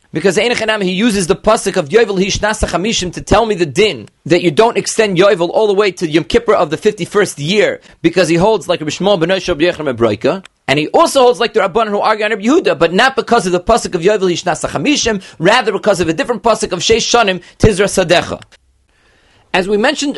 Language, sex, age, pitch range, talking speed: English, male, 30-49, 180-230 Hz, 190 wpm